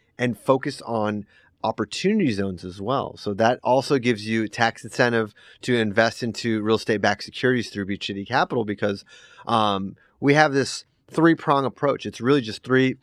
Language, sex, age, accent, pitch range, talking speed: English, male, 30-49, American, 105-125 Hz, 170 wpm